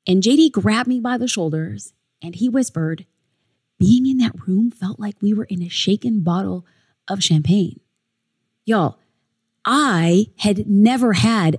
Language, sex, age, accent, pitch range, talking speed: English, female, 20-39, American, 185-265 Hz, 150 wpm